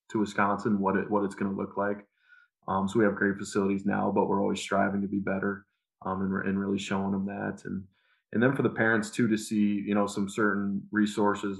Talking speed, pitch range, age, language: 235 wpm, 100-105 Hz, 20-39, English